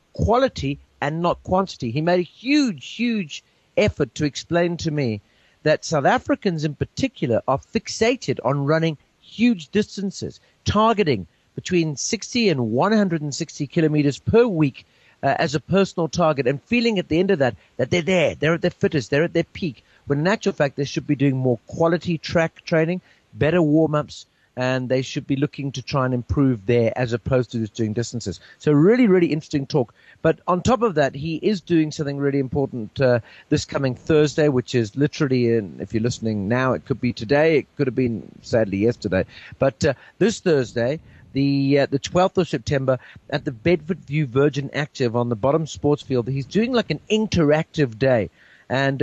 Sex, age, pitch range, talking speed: male, 50-69, 125-170 Hz, 185 wpm